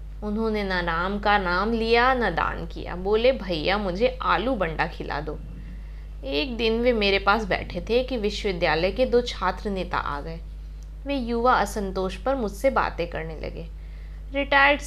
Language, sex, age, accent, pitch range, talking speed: Hindi, female, 20-39, native, 185-260 Hz, 170 wpm